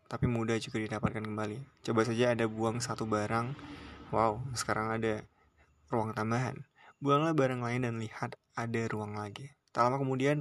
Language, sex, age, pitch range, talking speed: Indonesian, male, 20-39, 110-130 Hz, 155 wpm